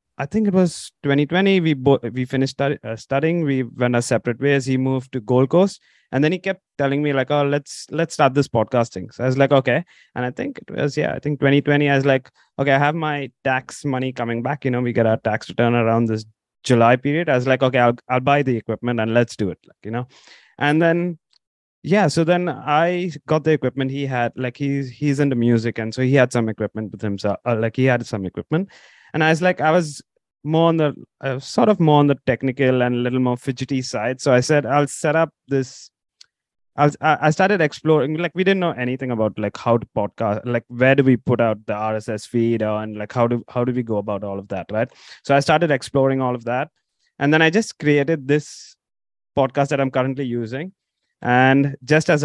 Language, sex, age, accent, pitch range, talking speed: English, male, 20-39, Indian, 120-150 Hz, 235 wpm